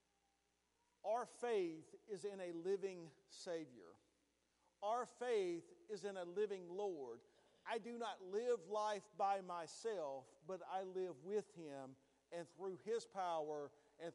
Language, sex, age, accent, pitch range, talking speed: English, male, 40-59, American, 160-220 Hz, 130 wpm